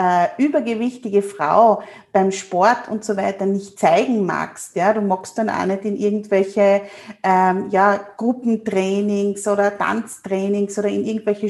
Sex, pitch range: female, 200-230 Hz